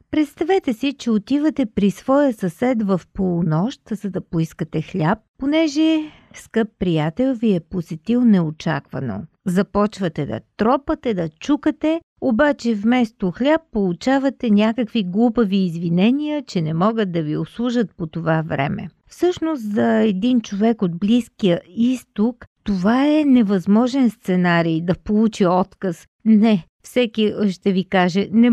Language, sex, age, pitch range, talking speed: Bulgarian, female, 50-69, 185-250 Hz, 130 wpm